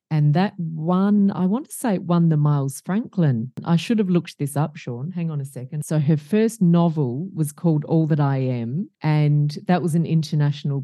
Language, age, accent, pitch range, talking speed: English, 40-59, Australian, 140-170 Hz, 210 wpm